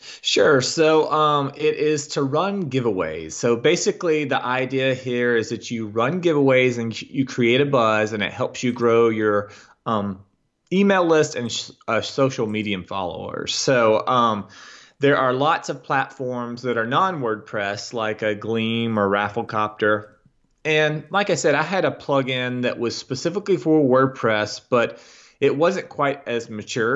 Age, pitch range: 30-49, 110-145 Hz